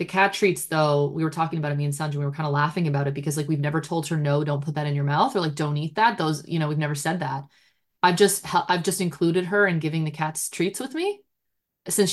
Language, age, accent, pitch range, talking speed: English, 20-39, American, 155-185 Hz, 285 wpm